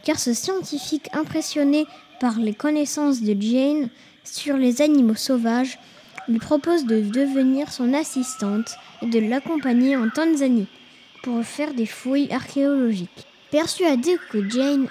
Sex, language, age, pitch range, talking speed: female, French, 10-29, 225-285 Hz, 130 wpm